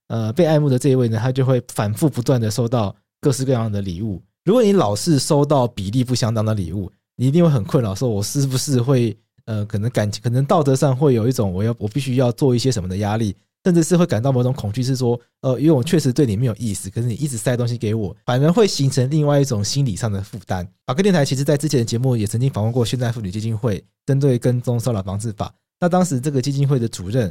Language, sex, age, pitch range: Chinese, male, 20-39, 110-145 Hz